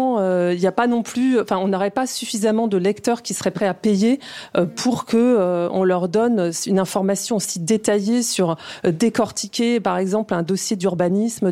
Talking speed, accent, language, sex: 200 wpm, French, French, female